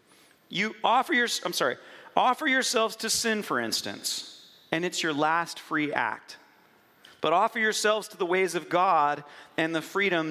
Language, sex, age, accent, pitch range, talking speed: English, male, 40-59, American, 160-230 Hz, 150 wpm